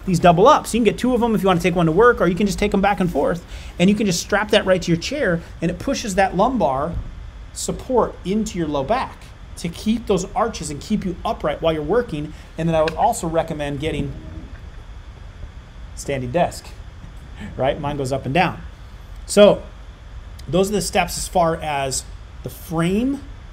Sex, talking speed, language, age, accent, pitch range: male, 210 wpm, English, 30-49, American, 140-185 Hz